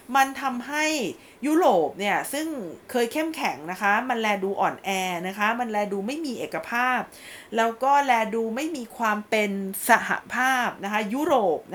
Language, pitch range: Thai, 200-260 Hz